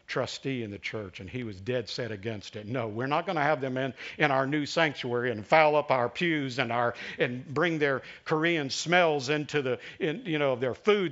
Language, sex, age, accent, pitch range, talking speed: English, male, 50-69, American, 120-165 Hz, 225 wpm